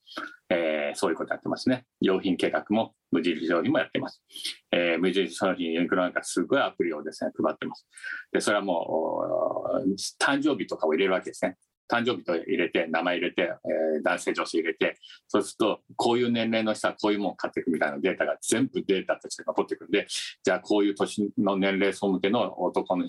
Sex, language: male, Japanese